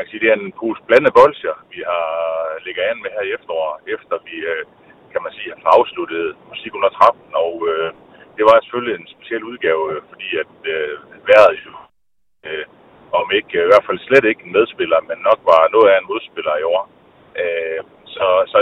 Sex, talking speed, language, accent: male, 175 wpm, Danish, native